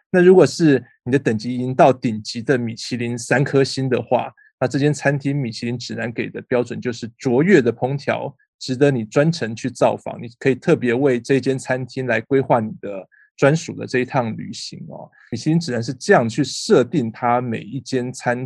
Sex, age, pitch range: male, 20-39, 120-140 Hz